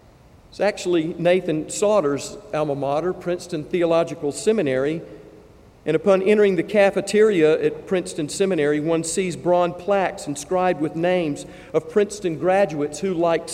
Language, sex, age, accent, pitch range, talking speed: English, male, 50-69, American, 145-185 Hz, 130 wpm